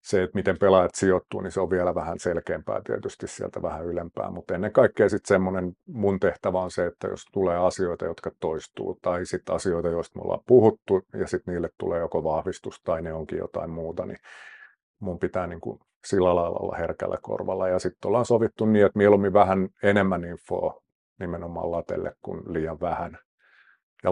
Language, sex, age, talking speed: Finnish, male, 50-69, 180 wpm